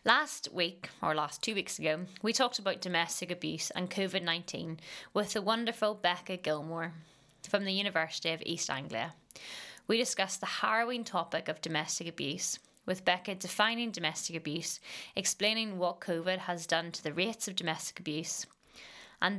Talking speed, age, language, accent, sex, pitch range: 155 wpm, 20-39, English, British, female, 165-210 Hz